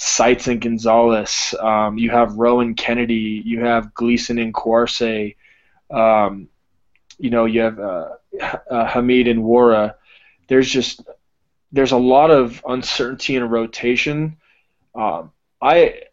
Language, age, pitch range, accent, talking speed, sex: English, 20-39, 115-125 Hz, American, 130 wpm, male